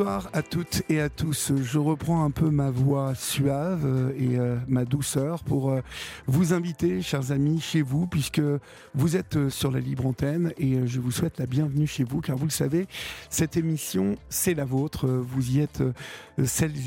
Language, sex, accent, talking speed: French, male, French, 180 wpm